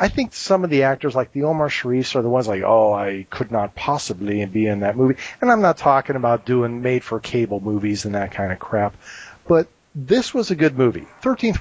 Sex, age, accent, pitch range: male, 40-59, American, 110-140 Hz